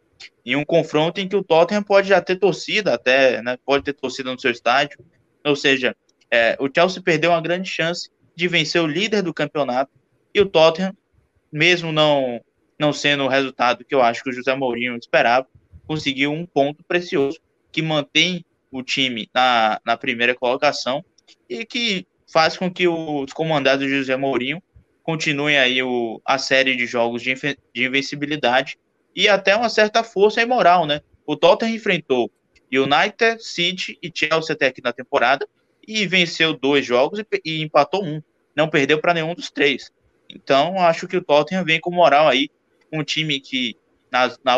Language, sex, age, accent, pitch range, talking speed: Portuguese, male, 20-39, Brazilian, 130-170 Hz, 170 wpm